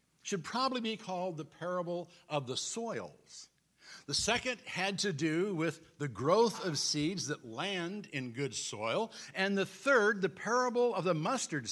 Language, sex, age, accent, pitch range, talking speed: English, male, 60-79, American, 155-210 Hz, 165 wpm